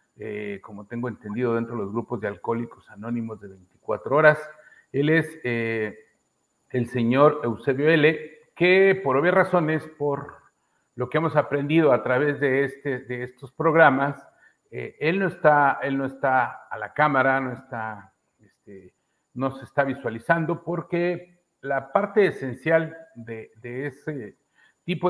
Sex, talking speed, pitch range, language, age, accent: male, 150 wpm, 125-155 Hz, Spanish, 50-69, Mexican